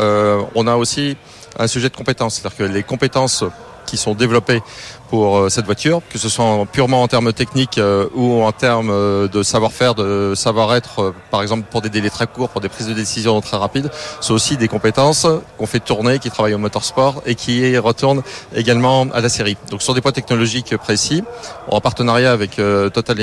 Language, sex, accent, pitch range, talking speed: French, male, French, 105-125 Hz, 195 wpm